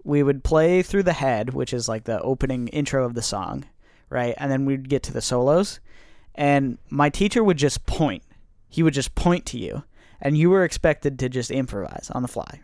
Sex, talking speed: male, 215 wpm